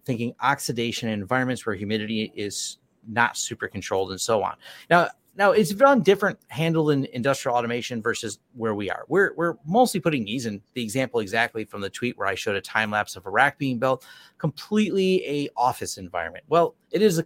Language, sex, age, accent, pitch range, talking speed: English, male, 30-49, American, 110-160 Hz, 200 wpm